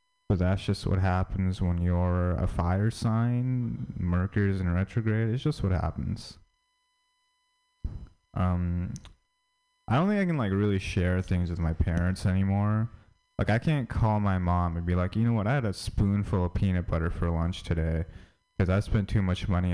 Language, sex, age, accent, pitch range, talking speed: English, male, 20-39, American, 90-110 Hz, 180 wpm